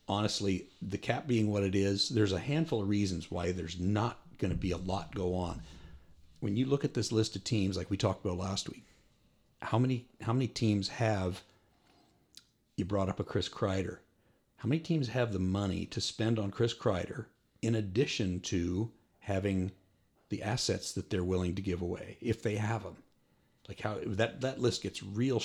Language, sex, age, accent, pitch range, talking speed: English, male, 50-69, American, 90-115 Hz, 195 wpm